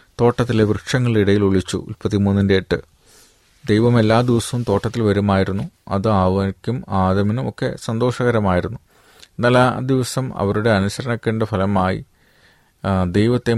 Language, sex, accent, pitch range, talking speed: Malayalam, male, native, 95-115 Hz, 95 wpm